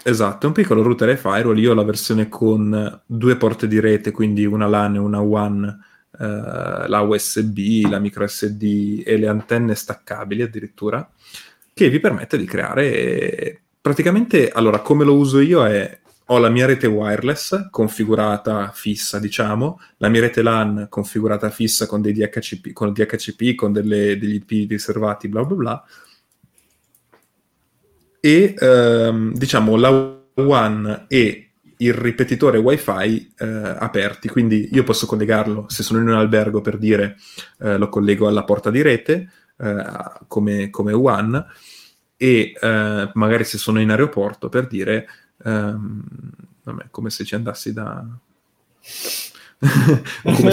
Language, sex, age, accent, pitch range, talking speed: Italian, male, 20-39, native, 105-115 Hz, 145 wpm